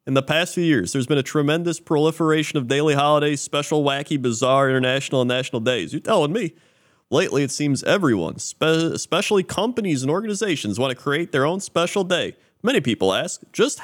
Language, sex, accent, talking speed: English, male, American, 180 wpm